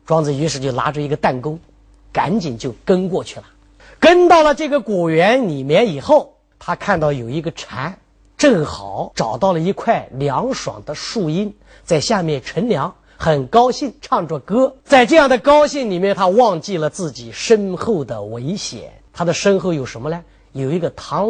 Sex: male